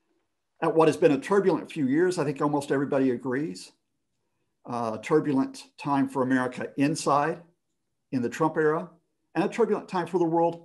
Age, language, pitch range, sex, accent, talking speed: 50-69, English, 135-175 Hz, male, American, 170 wpm